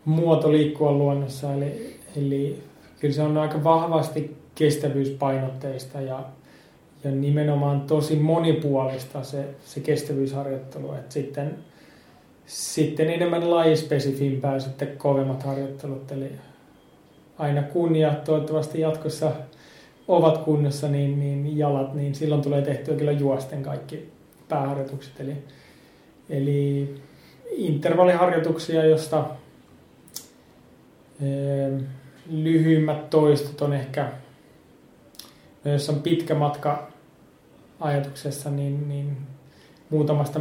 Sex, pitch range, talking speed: male, 140-150 Hz, 90 wpm